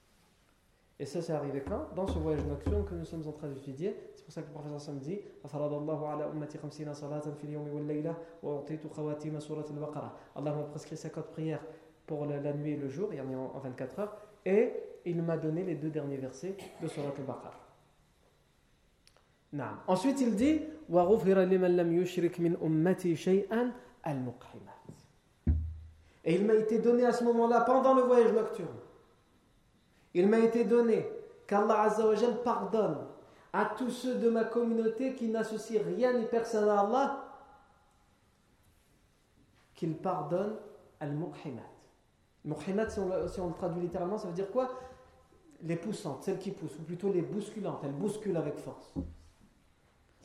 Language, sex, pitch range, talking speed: French, male, 150-220 Hz, 140 wpm